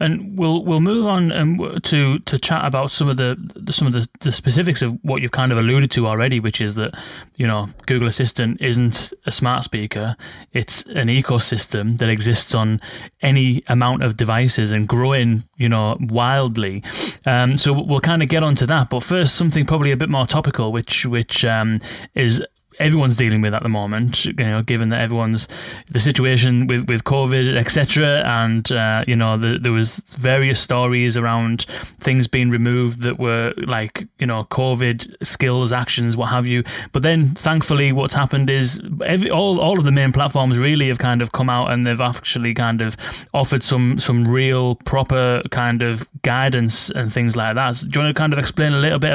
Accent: British